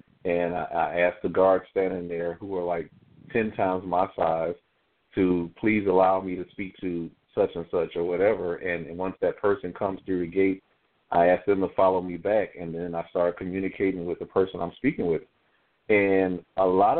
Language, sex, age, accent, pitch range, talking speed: English, male, 40-59, American, 90-105 Hz, 200 wpm